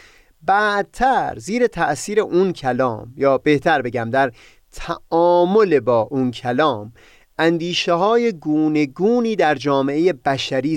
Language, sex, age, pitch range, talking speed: Persian, male, 30-49, 130-190 Hz, 110 wpm